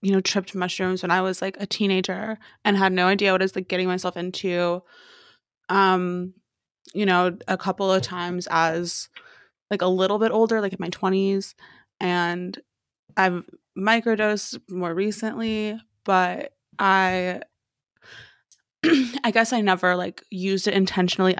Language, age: English, 20-39